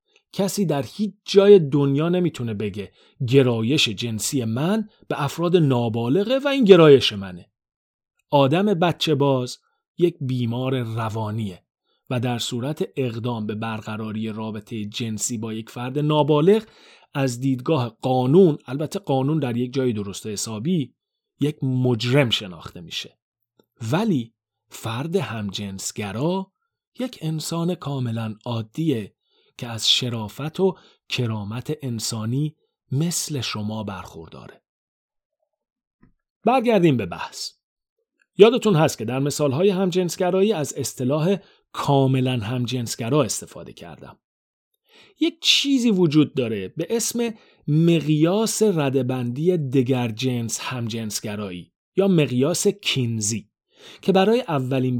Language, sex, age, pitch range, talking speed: Persian, male, 30-49, 115-180 Hz, 110 wpm